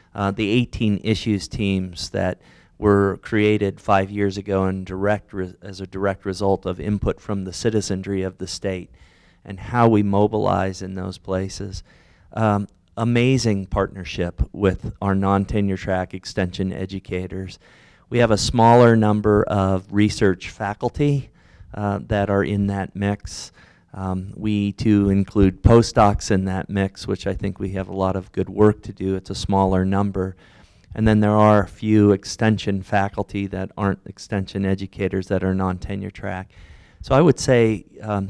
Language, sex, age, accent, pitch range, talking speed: English, male, 40-59, American, 95-105 Hz, 160 wpm